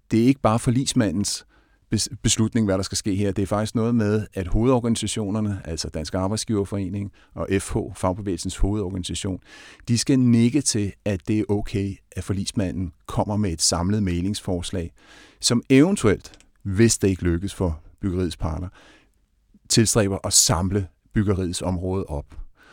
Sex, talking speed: male, 145 wpm